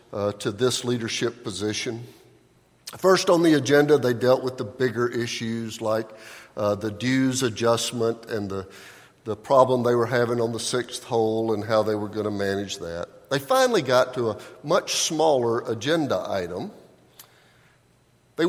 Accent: American